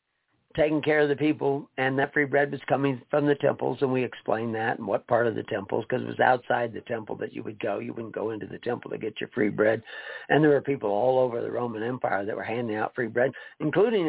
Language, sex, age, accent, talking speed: English, male, 60-79, American, 260 wpm